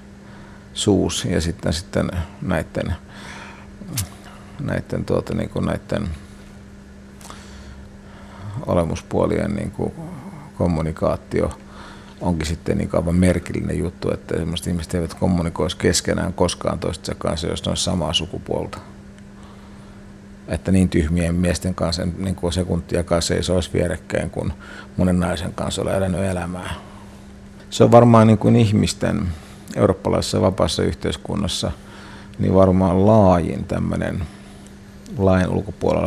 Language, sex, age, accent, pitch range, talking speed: Finnish, male, 50-69, native, 85-100 Hz, 110 wpm